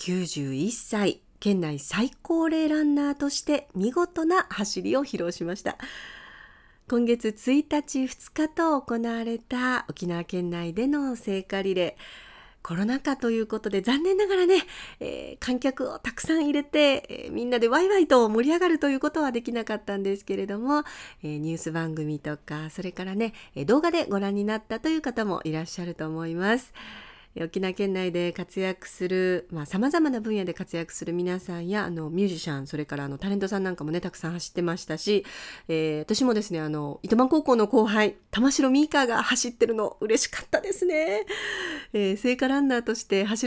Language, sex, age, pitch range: Japanese, female, 40-59, 175-270 Hz